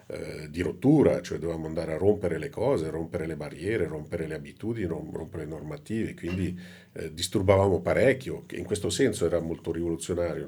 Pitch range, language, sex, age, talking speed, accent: 85-95 Hz, Italian, male, 50-69, 160 wpm, native